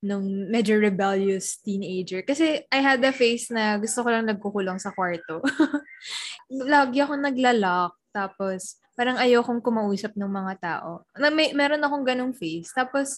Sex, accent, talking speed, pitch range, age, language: female, native, 155 wpm, 190-250 Hz, 10-29, Filipino